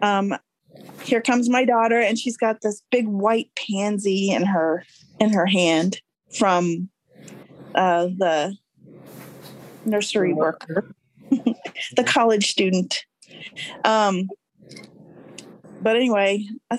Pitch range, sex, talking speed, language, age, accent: 190-235 Hz, female, 105 wpm, English, 30-49, American